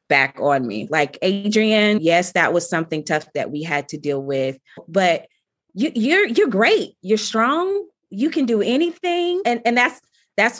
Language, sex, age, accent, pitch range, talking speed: English, female, 30-49, American, 155-210 Hz, 170 wpm